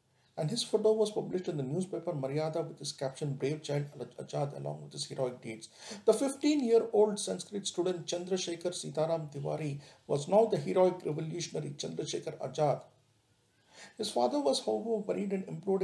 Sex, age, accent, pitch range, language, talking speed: male, 50-69, Indian, 145-195 Hz, English, 155 wpm